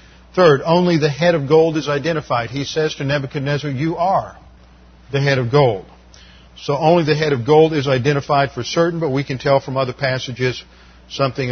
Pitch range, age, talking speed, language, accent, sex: 125-155 Hz, 50-69, 190 wpm, English, American, male